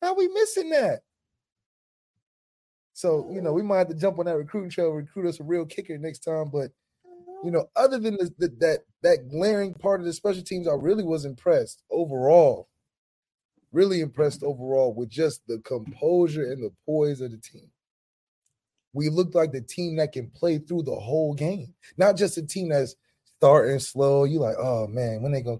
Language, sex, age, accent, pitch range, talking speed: English, male, 20-39, American, 130-170 Hz, 195 wpm